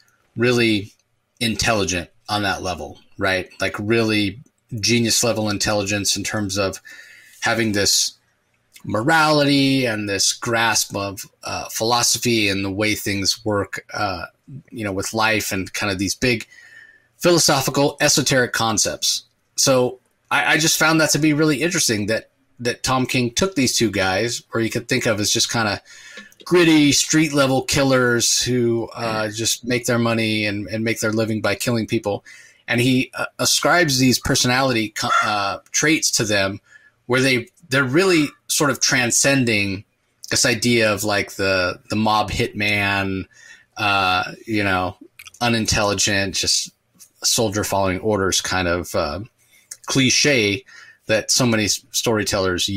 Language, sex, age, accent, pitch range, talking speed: English, male, 30-49, American, 105-130 Hz, 145 wpm